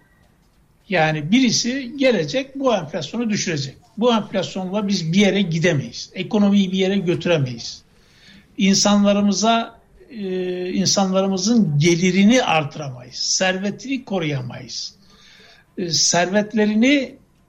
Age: 60-79